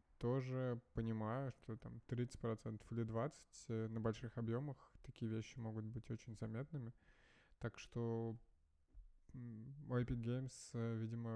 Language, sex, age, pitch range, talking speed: Russian, male, 20-39, 115-130 Hz, 110 wpm